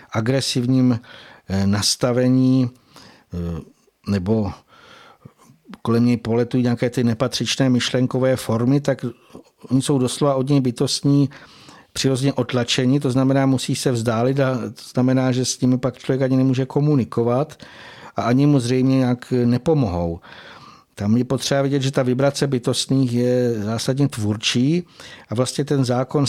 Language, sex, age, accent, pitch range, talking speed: Czech, male, 60-79, native, 120-130 Hz, 130 wpm